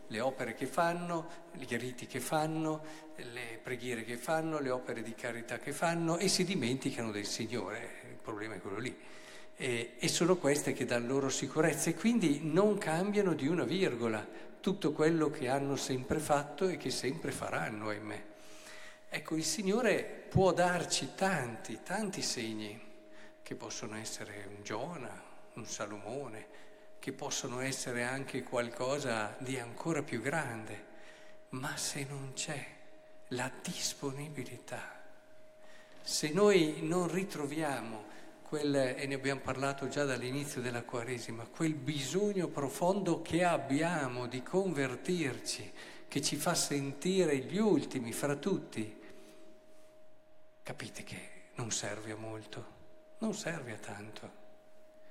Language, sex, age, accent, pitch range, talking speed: Italian, male, 50-69, native, 125-175 Hz, 135 wpm